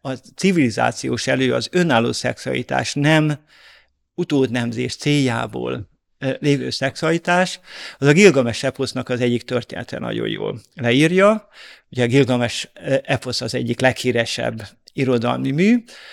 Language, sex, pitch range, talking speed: Hungarian, male, 120-145 Hz, 110 wpm